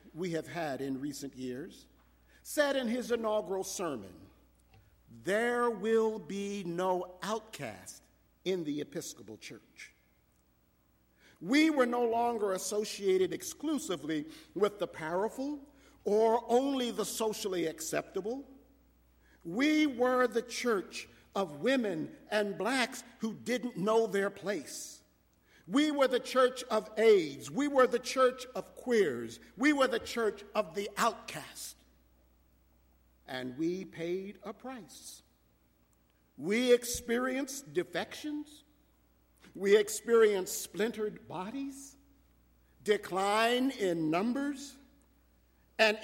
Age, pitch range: 50-69, 170-250 Hz